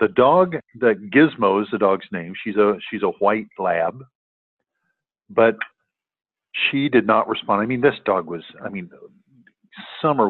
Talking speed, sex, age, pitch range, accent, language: 155 wpm, male, 50-69, 95-135 Hz, American, English